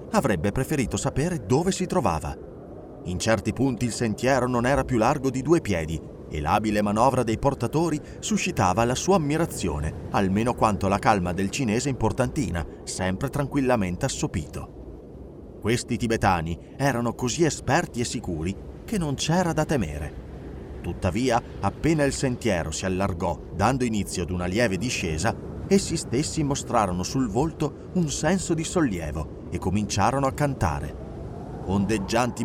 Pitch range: 95-145 Hz